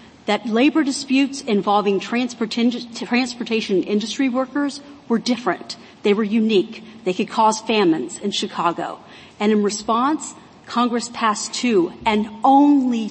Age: 40-59